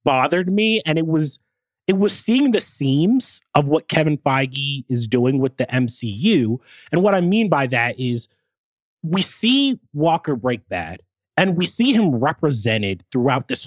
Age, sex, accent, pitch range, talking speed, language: 30-49, male, American, 120-170 Hz, 165 wpm, English